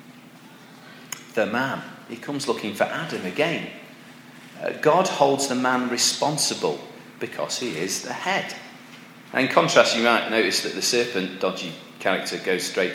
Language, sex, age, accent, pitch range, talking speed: English, male, 40-59, British, 95-140 Hz, 150 wpm